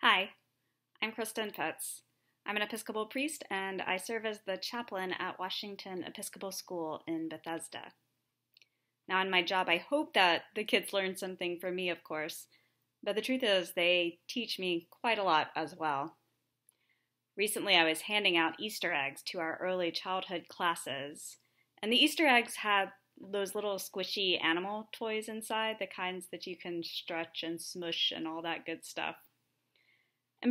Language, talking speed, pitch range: English, 165 wpm, 175-220 Hz